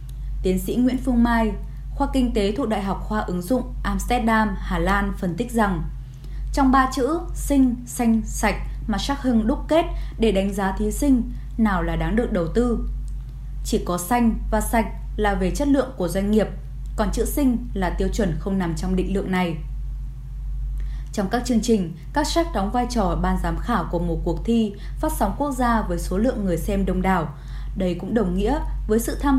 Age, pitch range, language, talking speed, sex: 10-29, 175-235 Hz, Vietnamese, 205 wpm, female